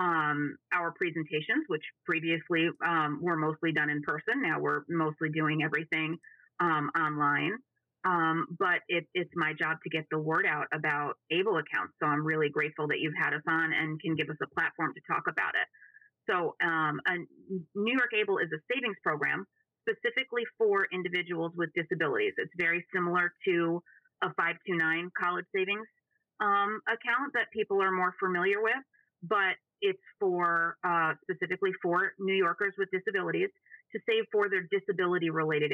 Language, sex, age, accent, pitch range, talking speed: English, female, 30-49, American, 160-215 Hz, 160 wpm